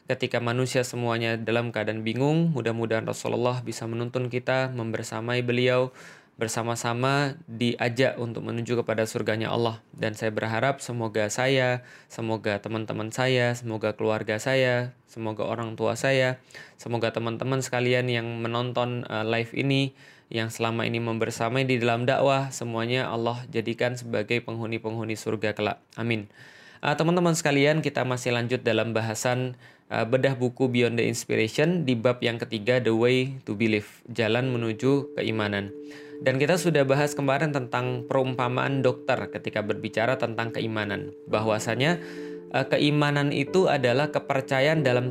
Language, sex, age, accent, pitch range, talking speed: Indonesian, male, 20-39, native, 115-135 Hz, 135 wpm